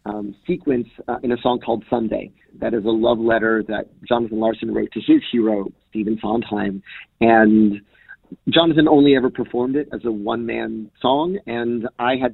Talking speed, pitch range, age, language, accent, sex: 170 wpm, 105-125 Hz, 40-59, English, American, male